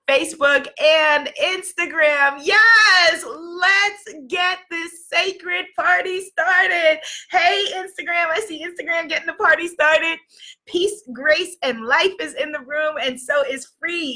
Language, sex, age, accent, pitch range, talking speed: English, female, 20-39, American, 250-330 Hz, 130 wpm